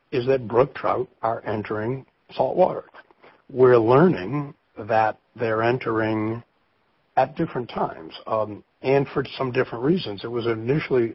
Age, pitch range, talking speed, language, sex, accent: 60-79, 105-130 Hz, 135 wpm, English, male, American